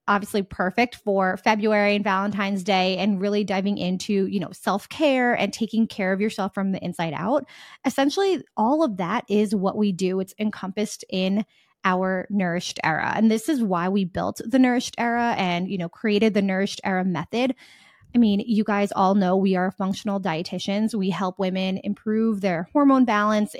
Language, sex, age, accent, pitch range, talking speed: English, female, 20-39, American, 190-225 Hz, 180 wpm